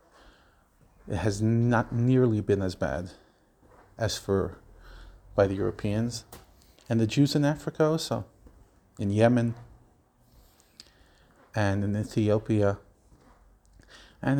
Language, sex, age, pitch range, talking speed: English, male, 40-59, 95-115 Hz, 100 wpm